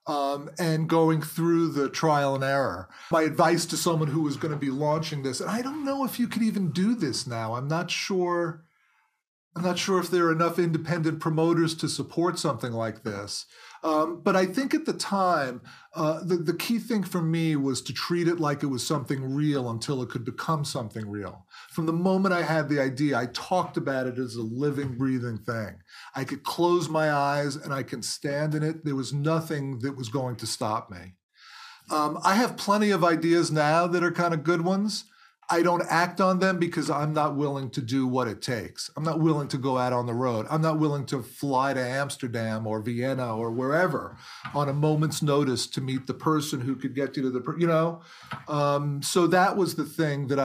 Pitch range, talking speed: 130-170 Hz, 215 wpm